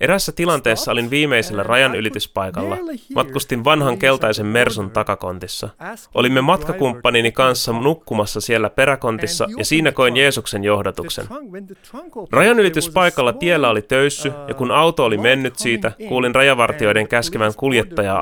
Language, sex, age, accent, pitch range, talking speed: Finnish, male, 30-49, native, 110-155 Hz, 115 wpm